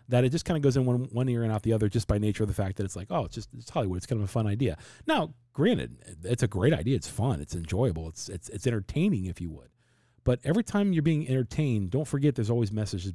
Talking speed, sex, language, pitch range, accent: 285 wpm, male, English, 105-135 Hz, American